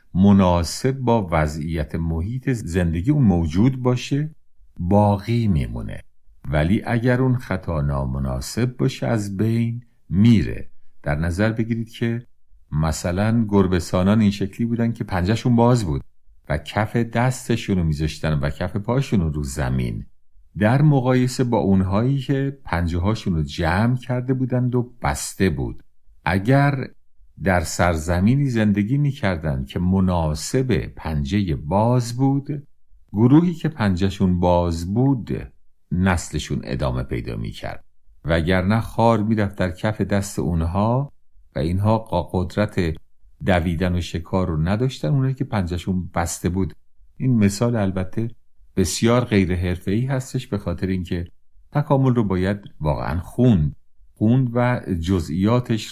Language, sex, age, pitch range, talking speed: Persian, male, 50-69, 85-120 Hz, 120 wpm